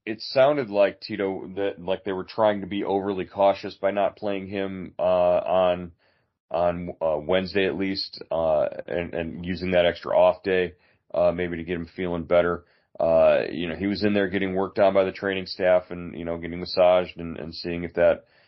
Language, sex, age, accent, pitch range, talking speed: English, male, 30-49, American, 85-95 Hz, 210 wpm